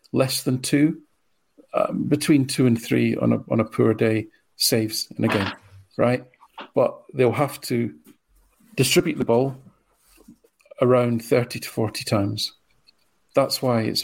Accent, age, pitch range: British, 40-59, 110-130 Hz